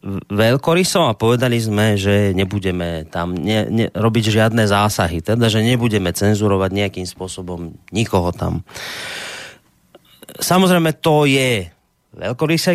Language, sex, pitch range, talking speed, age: Slovak, male, 105-145 Hz, 115 wpm, 30-49